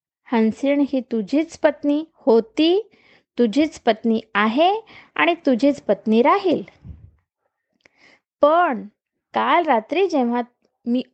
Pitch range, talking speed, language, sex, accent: 240-315 Hz, 90 wpm, Marathi, female, native